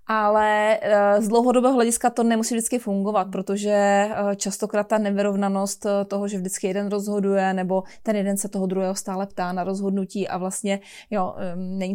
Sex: female